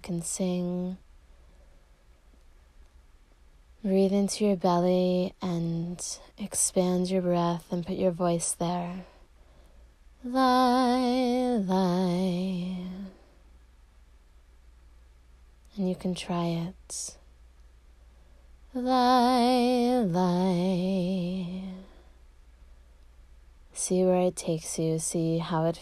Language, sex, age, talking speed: English, female, 20-39, 75 wpm